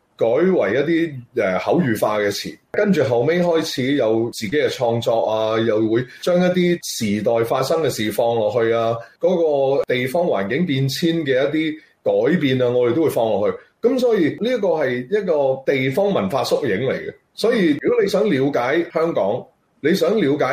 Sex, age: male, 30-49